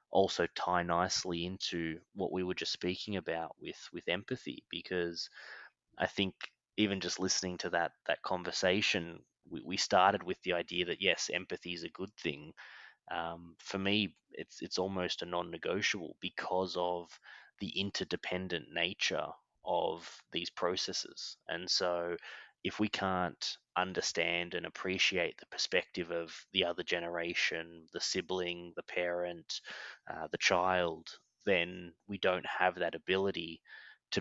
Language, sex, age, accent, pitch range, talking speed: English, male, 20-39, Australian, 85-95 Hz, 140 wpm